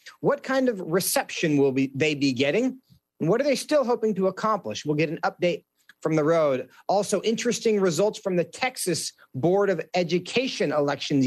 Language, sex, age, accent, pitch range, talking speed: English, male, 40-59, American, 155-215 Hz, 180 wpm